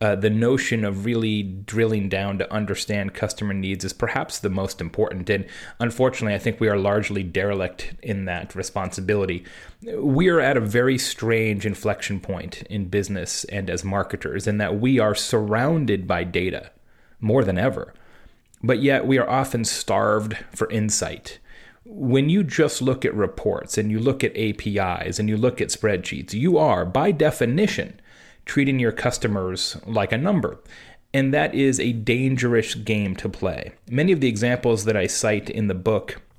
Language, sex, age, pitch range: English, male, 30-49, 100-125 Hz